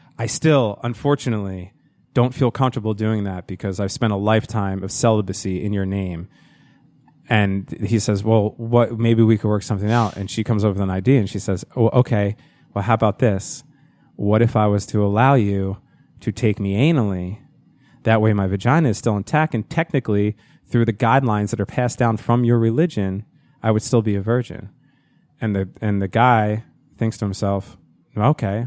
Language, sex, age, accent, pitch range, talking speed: English, male, 30-49, American, 100-125 Hz, 190 wpm